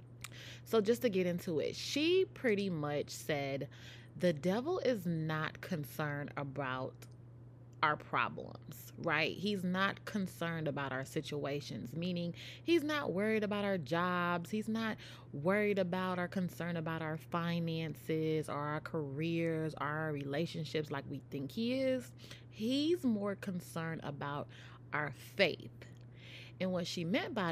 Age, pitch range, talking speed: 20-39, 130-185 Hz, 135 wpm